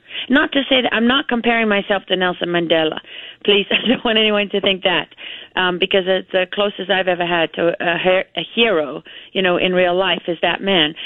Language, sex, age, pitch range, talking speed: English, female, 40-59, 185-225 Hz, 210 wpm